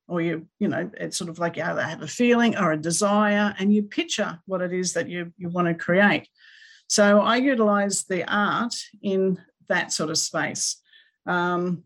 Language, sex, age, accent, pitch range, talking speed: English, female, 50-69, Australian, 170-210 Hz, 195 wpm